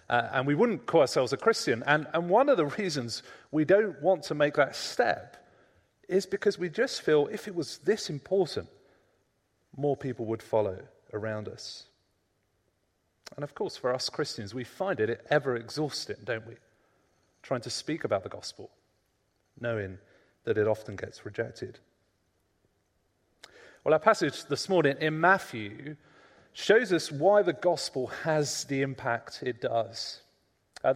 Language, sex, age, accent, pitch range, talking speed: English, male, 30-49, British, 115-165 Hz, 155 wpm